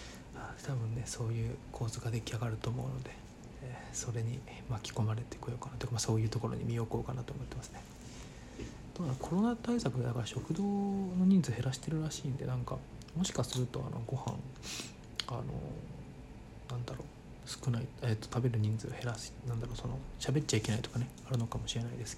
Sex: male